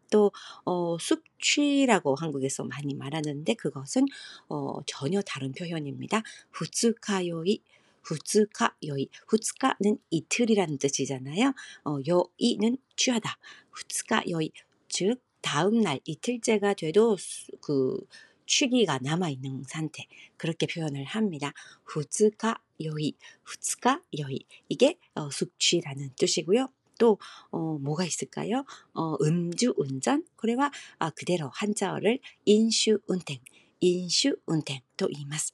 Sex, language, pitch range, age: female, Korean, 145-215 Hz, 40-59